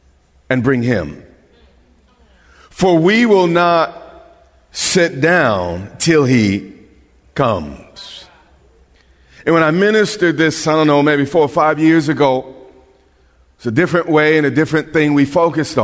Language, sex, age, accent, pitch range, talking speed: English, male, 40-59, American, 130-190 Hz, 135 wpm